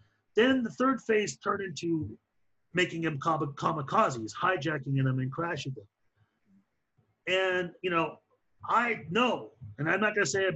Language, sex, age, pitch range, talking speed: English, male, 40-59, 140-185 Hz, 150 wpm